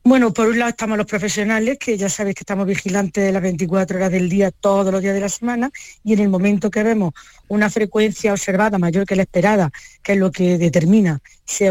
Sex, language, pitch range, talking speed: female, Spanish, 185-225 Hz, 225 wpm